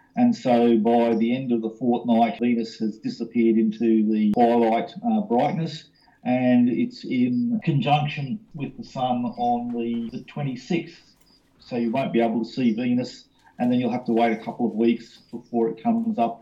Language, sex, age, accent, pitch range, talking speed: English, male, 40-59, Australian, 115-190 Hz, 180 wpm